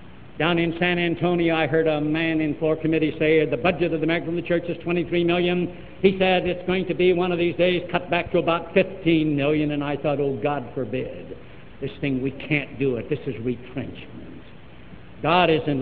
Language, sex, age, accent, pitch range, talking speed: English, male, 60-79, American, 140-205 Hz, 205 wpm